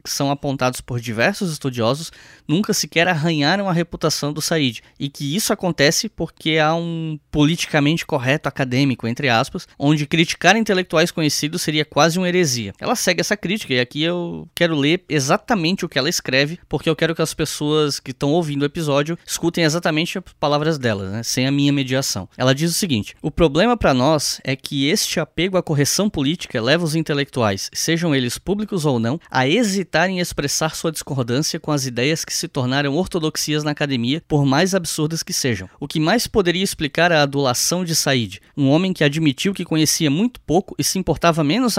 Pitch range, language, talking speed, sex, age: 140-175 Hz, Portuguese, 190 wpm, male, 10-29